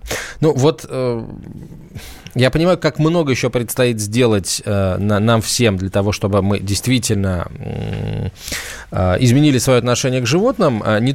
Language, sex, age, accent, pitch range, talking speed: Russian, male, 20-39, native, 100-130 Hz, 120 wpm